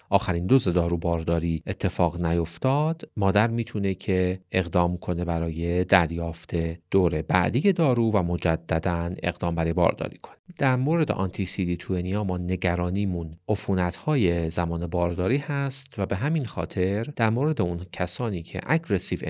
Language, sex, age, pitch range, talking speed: Persian, male, 40-59, 85-110 Hz, 125 wpm